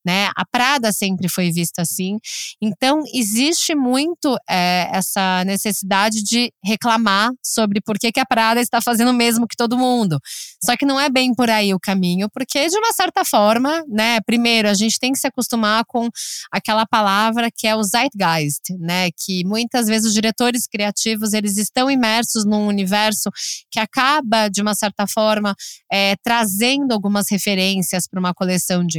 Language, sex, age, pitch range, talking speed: Portuguese, female, 20-39, 185-240 Hz, 170 wpm